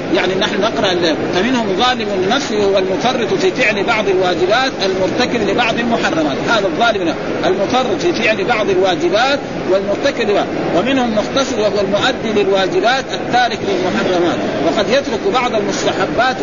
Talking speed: 130 wpm